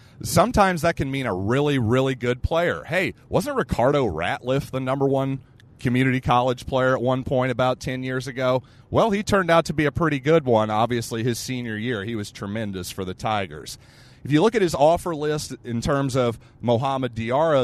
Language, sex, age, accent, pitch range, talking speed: English, male, 30-49, American, 110-135 Hz, 195 wpm